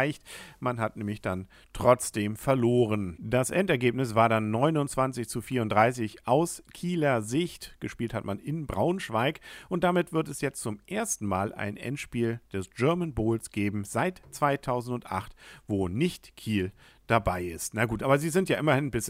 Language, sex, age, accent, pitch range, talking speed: German, male, 50-69, German, 105-145 Hz, 155 wpm